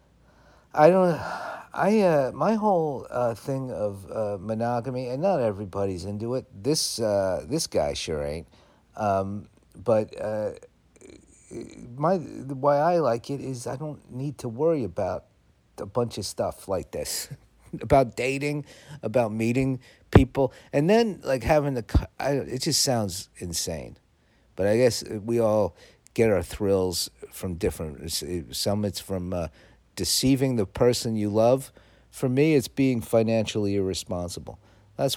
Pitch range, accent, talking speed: 95-130 Hz, American, 145 wpm